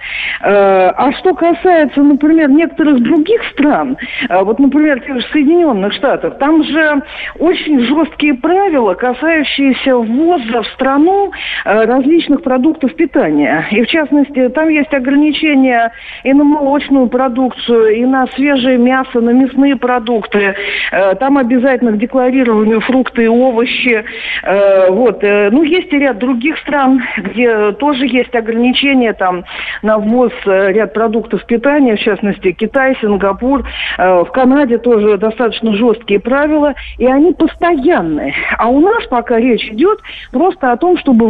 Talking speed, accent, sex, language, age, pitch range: 125 wpm, native, female, Russian, 50-69, 230-300 Hz